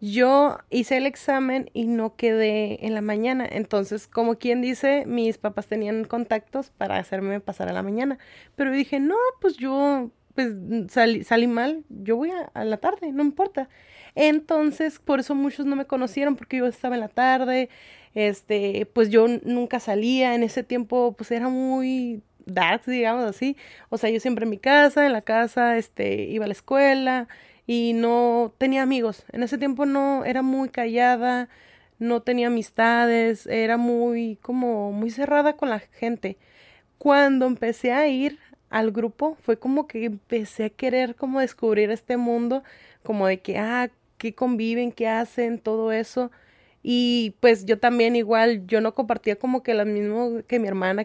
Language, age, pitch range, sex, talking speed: Spanish, 20-39, 225-265 Hz, female, 170 wpm